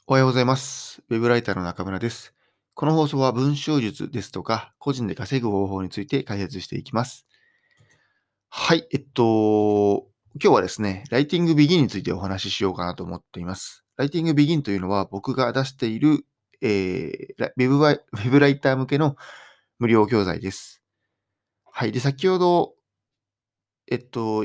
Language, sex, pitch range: Japanese, male, 100-135 Hz